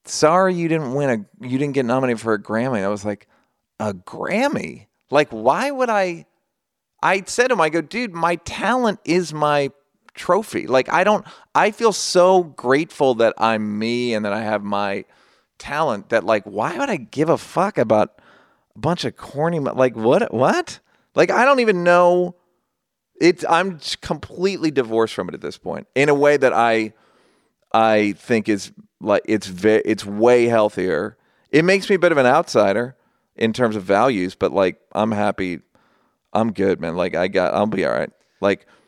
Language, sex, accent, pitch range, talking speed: English, male, American, 105-170 Hz, 185 wpm